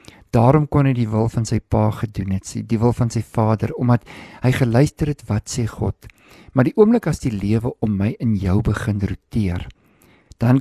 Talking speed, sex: 200 wpm, male